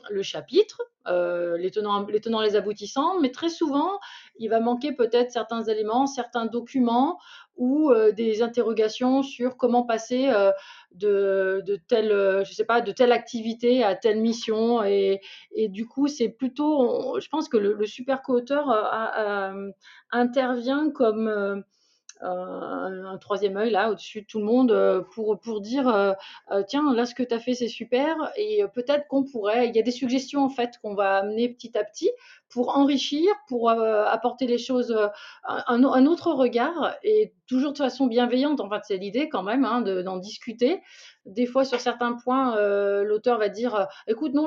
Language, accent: French, French